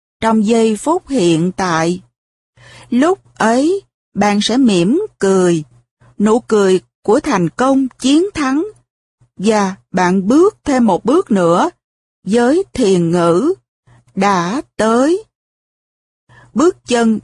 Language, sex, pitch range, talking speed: Vietnamese, female, 175-265 Hz, 110 wpm